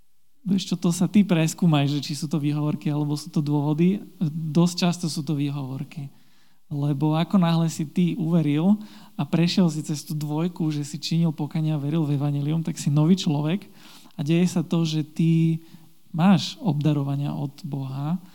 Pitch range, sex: 145-175 Hz, male